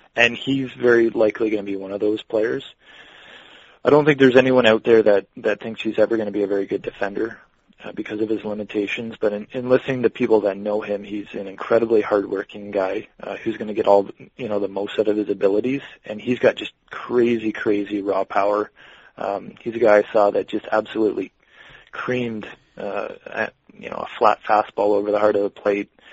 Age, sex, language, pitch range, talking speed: 20-39, male, English, 105-115 Hz, 220 wpm